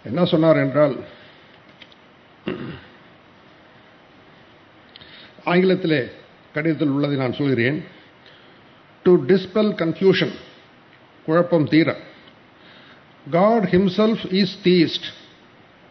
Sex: male